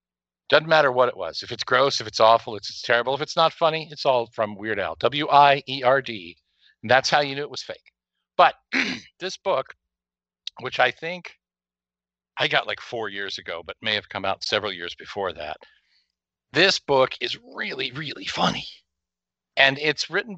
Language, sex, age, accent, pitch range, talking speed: English, male, 50-69, American, 105-150 Hz, 185 wpm